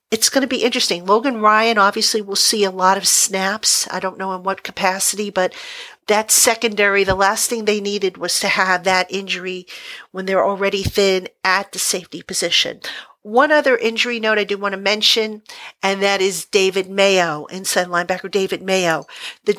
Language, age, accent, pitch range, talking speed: English, 50-69, American, 185-220 Hz, 185 wpm